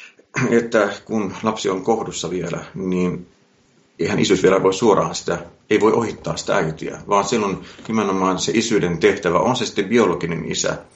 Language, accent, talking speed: Finnish, native, 160 wpm